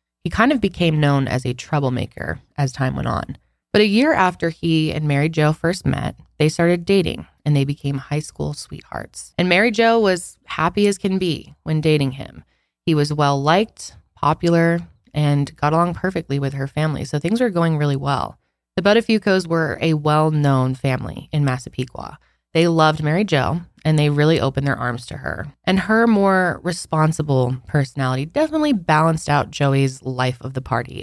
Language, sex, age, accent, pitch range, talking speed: English, female, 20-39, American, 140-180 Hz, 170 wpm